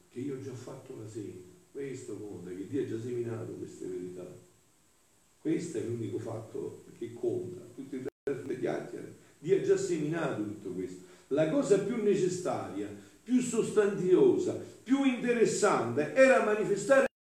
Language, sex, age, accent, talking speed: Italian, male, 50-69, native, 145 wpm